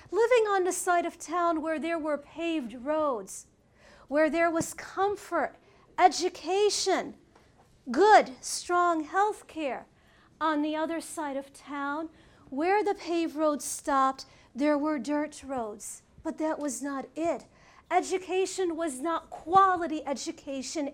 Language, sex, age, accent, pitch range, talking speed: English, female, 40-59, American, 285-355 Hz, 130 wpm